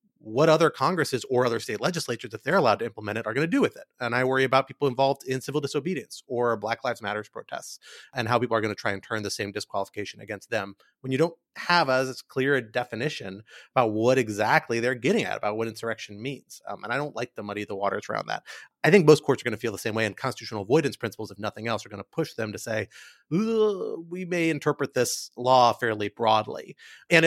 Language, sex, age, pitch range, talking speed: English, male, 30-49, 105-135 Hz, 240 wpm